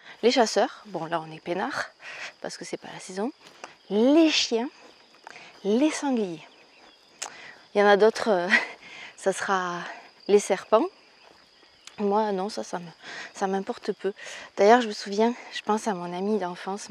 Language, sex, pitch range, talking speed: French, female, 190-225 Hz, 155 wpm